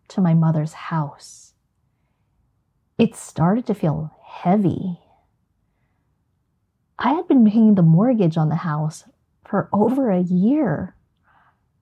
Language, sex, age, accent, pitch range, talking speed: English, female, 30-49, American, 155-225 Hz, 110 wpm